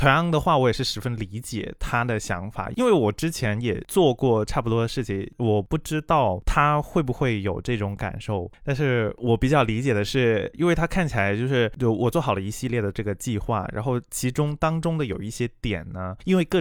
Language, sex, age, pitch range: Chinese, male, 20-39, 105-140 Hz